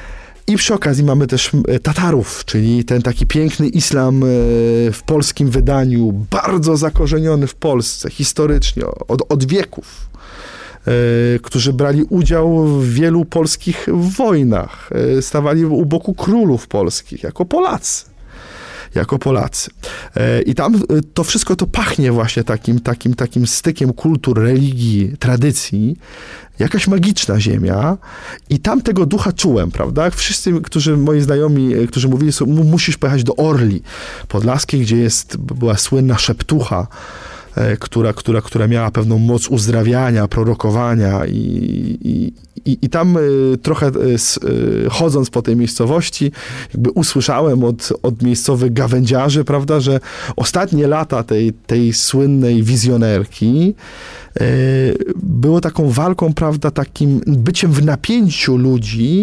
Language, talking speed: Polish, 120 wpm